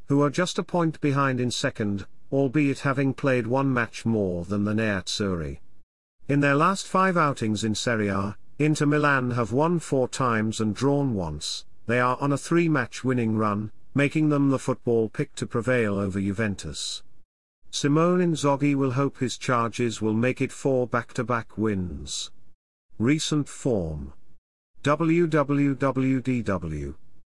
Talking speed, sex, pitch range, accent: 145 wpm, male, 105-140 Hz, British